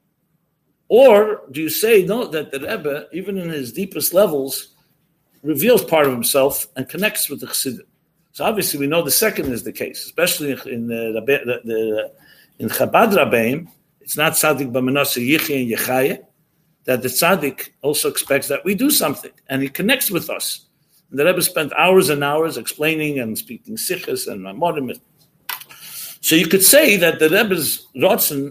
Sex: male